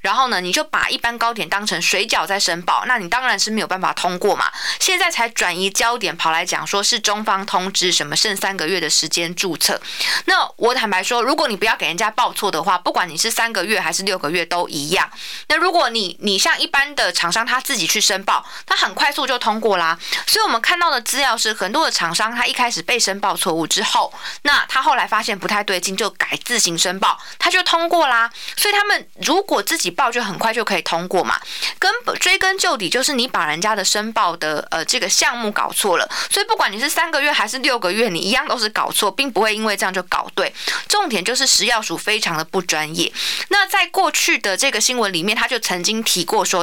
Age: 20-39